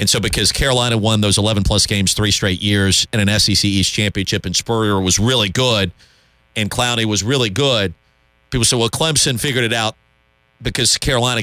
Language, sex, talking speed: English, male, 185 wpm